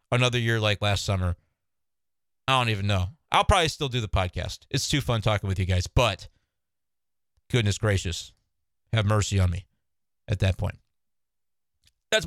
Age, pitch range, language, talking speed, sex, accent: 30-49, 100-135 Hz, English, 160 wpm, male, American